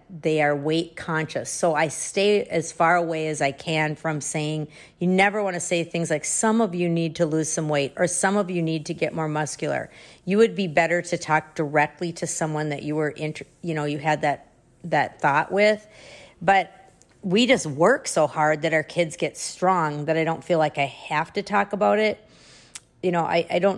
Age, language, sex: 40-59, English, female